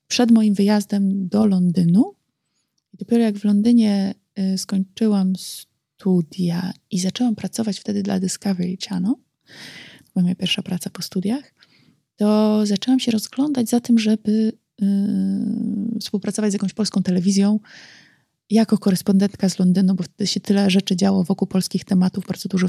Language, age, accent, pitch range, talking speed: Polish, 20-39, native, 190-220 Hz, 145 wpm